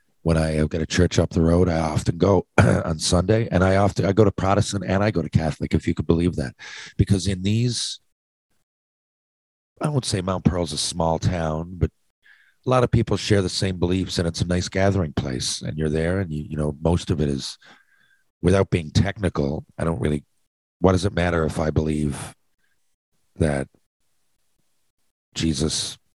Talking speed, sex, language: 190 wpm, male, English